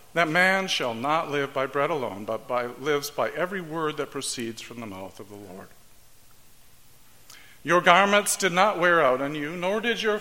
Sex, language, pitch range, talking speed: male, English, 135-190 Hz, 190 wpm